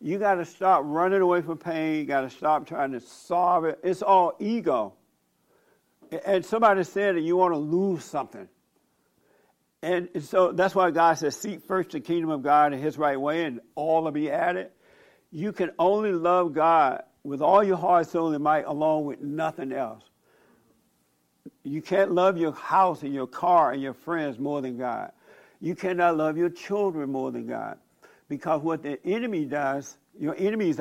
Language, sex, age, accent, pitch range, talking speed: English, male, 60-79, American, 145-185 Hz, 185 wpm